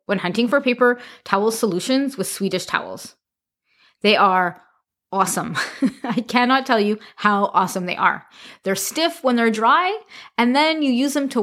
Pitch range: 190-255 Hz